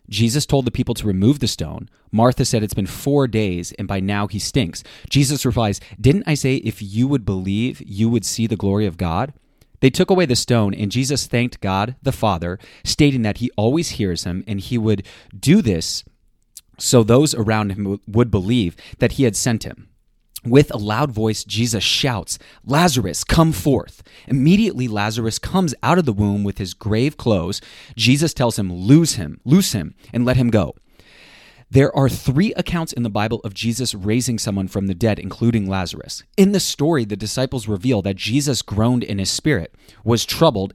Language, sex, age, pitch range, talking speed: English, male, 30-49, 100-130 Hz, 190 wpm